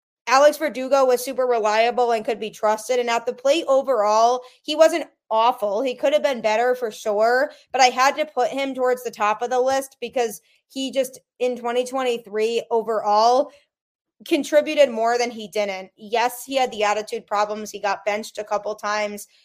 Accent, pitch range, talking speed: American, 220-270 Hz, 180 wpm